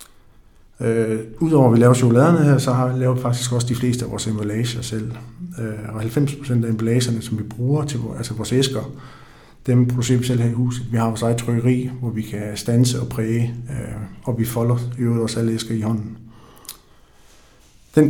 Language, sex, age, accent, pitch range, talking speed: Danish, male, 50-69, native, 115-125 Hz, 200 wpm